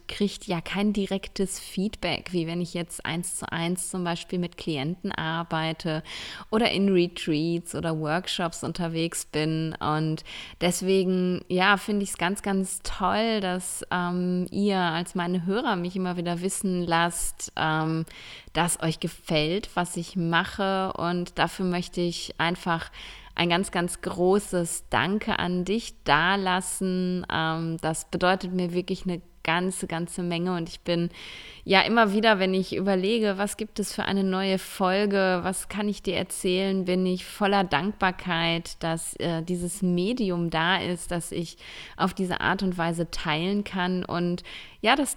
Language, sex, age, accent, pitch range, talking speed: German, female, 20-39, German, 170-190 Hz, 155 wpm